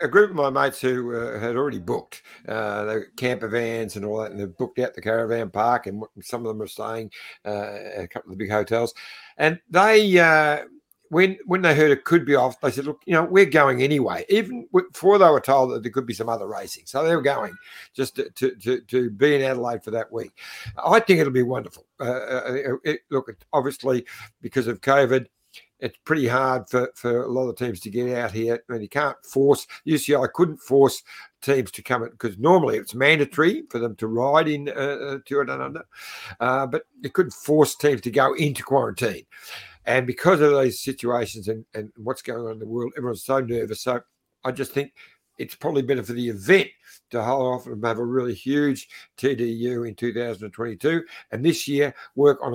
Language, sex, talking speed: English, male, 210 wpm